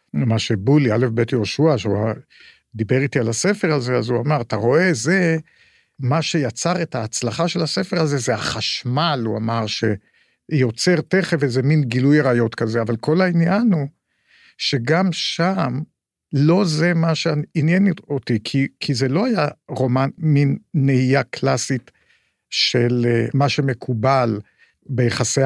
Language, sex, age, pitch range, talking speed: Hebrew, male, 50-69, 120-160 Hz, 135 wpm